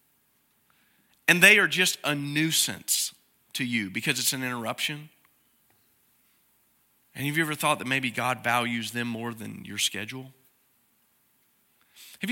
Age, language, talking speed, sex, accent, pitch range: 40-59, English, 130 wpm, male, American, 155-215 Hz